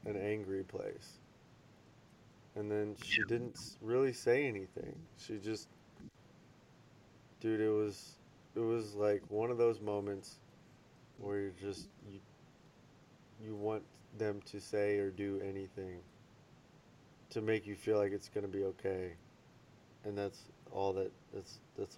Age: 30-49